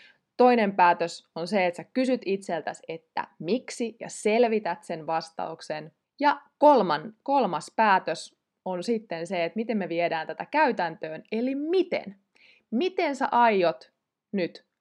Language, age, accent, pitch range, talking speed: Finnish, 20-39, native, 175-230 Hz, 135 wpm